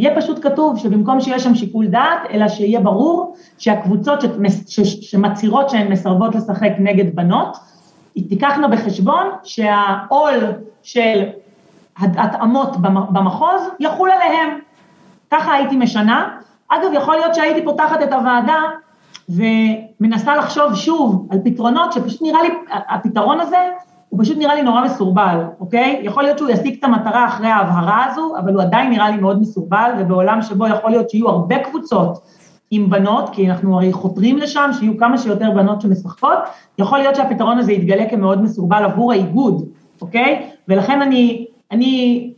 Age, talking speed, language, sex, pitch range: 30-49, 145 wpm, Hebrew, female, 200-270 Hz